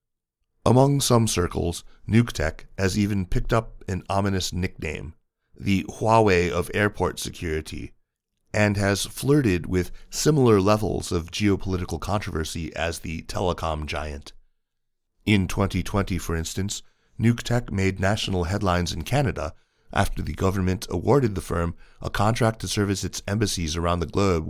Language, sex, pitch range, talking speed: English, male, 85-105 Hz, 130 wpm